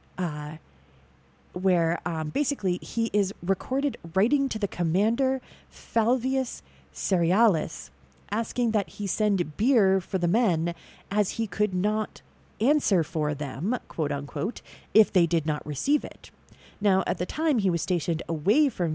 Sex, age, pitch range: female, 40-59, 155-195 Hz